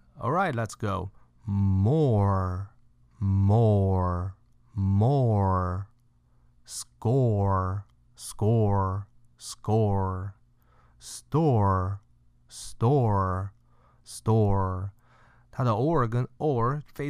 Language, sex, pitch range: Chinese, male, 95-120 Hz